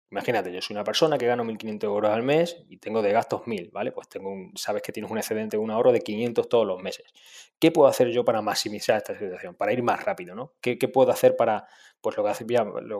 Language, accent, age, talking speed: Spanish, Spanish, 20-39, 260 wpm